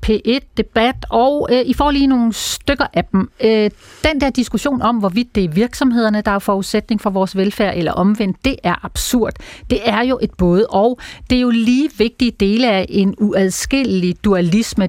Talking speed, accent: 185 wpm, native